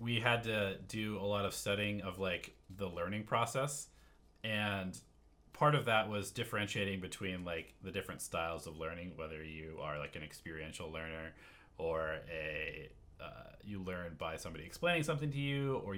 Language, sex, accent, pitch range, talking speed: English, male, American, 85-115 Hz, 170 wpm